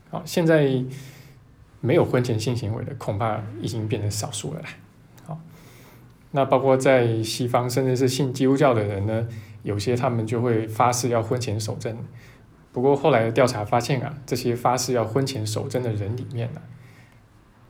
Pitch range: 110-135 Hz